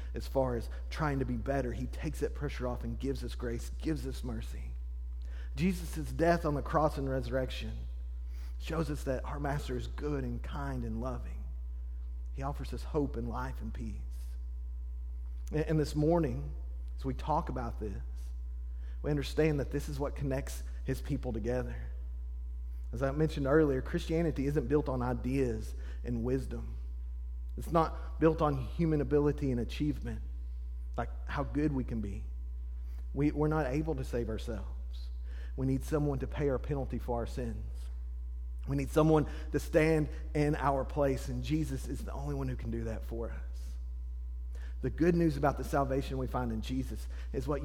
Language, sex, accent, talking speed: English, male, American, 170 wpm